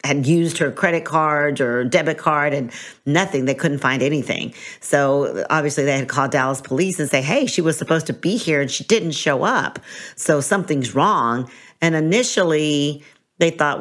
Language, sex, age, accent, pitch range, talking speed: English, female, 50-69, American, 140-160 Hz, 185 wpm